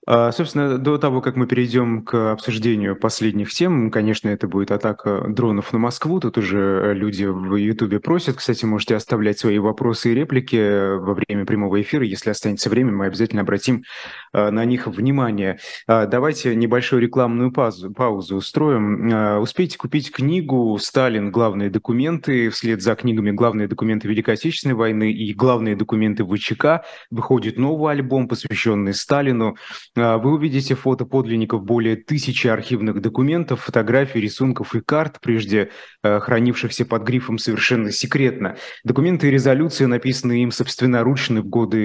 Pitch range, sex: 110-130 Hz, male